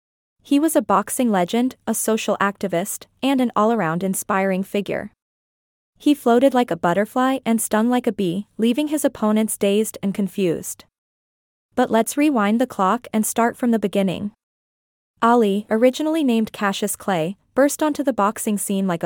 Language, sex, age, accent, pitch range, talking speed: English, female, 20-39, American, 195-245 Hz, 160 wpm